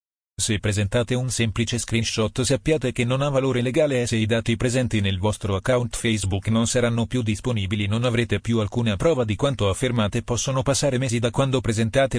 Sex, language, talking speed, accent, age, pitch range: male, Italian, 185 wpm, native, 40-59, 105-125 Hz